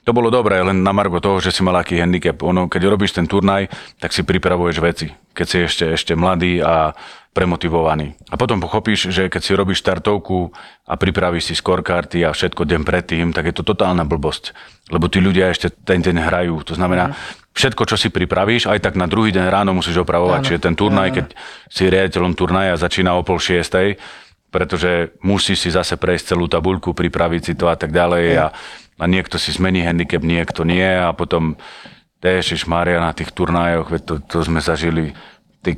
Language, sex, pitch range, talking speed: Slovak, male, 80-90 Hz, 190 wpm